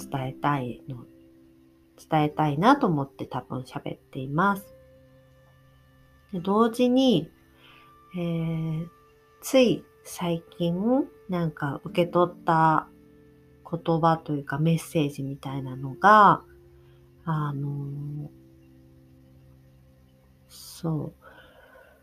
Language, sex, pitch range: Japanese, female, 130-175 Hz